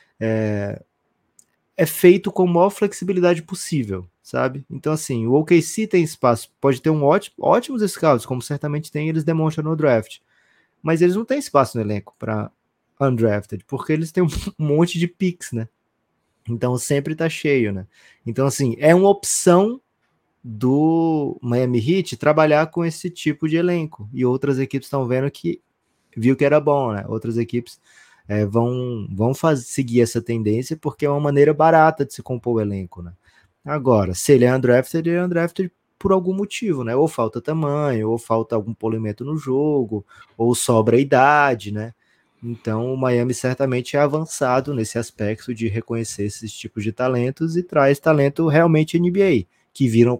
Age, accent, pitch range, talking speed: 20-39, Brazilian, 115-155 Hz, 165 wpm